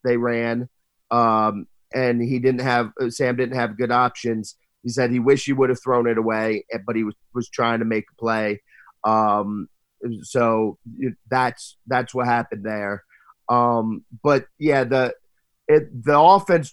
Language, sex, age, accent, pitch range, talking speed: English, male, 30-49, American, 120-150 Hz, 165 wpm